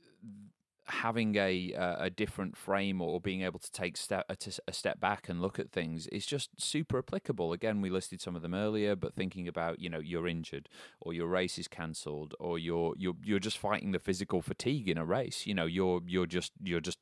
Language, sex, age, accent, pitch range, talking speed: English, male, 30-49, British, 85-100 Hz, 220 wpm